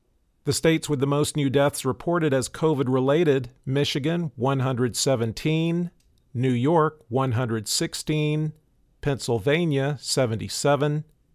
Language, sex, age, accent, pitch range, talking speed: English, male, 50-69, American, 125-150 Hz, 90 wpm